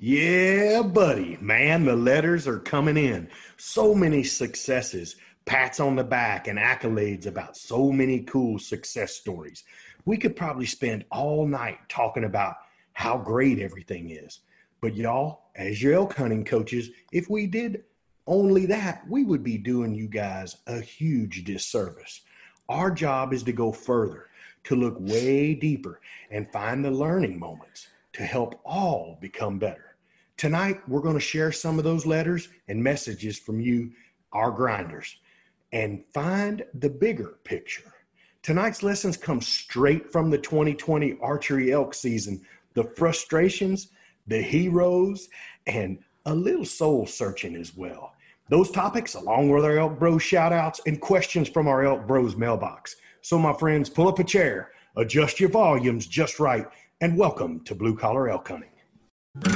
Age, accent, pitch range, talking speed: 40-59, American, 115-170 Hz, 150 wpm